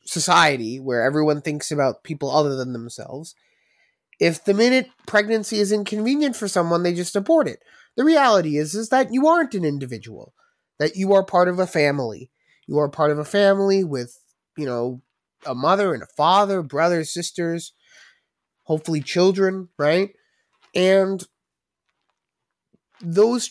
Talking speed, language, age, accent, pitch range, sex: 150 wpm, English, 30-49, American, 145-200 Hz, male